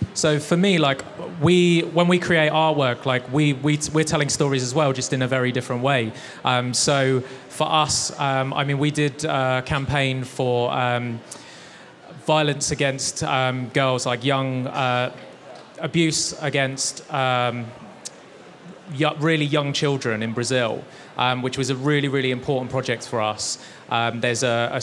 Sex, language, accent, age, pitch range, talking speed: male, English, British, 20-39, 120-140 Hz, 160 wpm